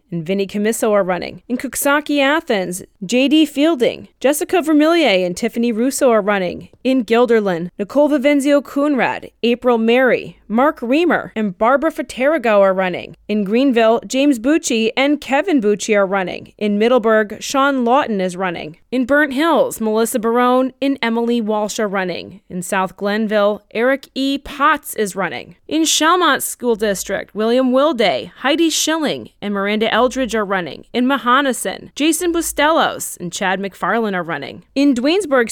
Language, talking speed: English, 150 wpm